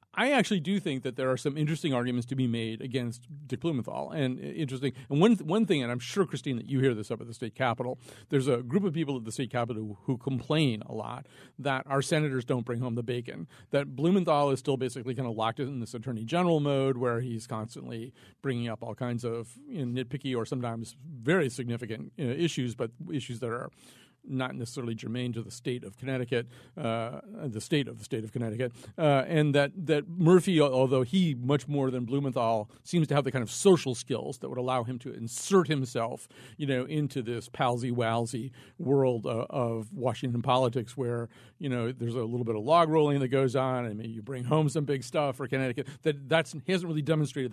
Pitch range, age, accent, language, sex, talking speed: 120-145 Hz, 40-59, American, English, male, 215 wpm